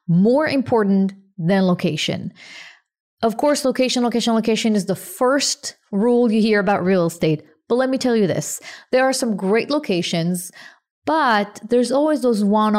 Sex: female